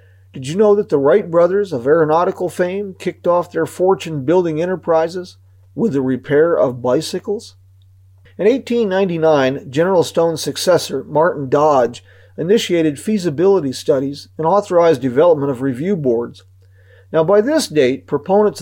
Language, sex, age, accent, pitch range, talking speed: English, male, 40-59, American, 130-175 Hz, 130 wpm